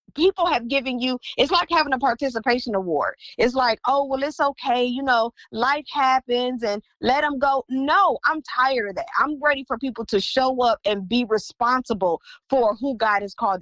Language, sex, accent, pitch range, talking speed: English, female, American, 240-290 Hz, 195 wpm